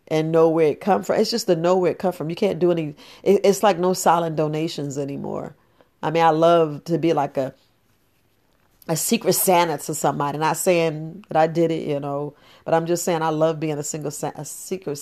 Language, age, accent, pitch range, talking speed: English, 40-59, American, 155-190 Hz, 230 wpm